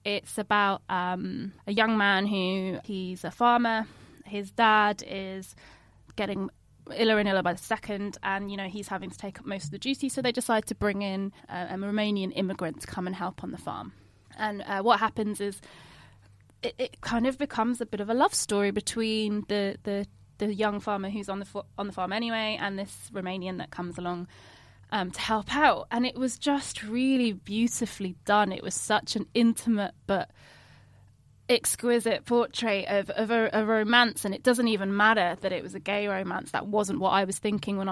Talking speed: 200 wpm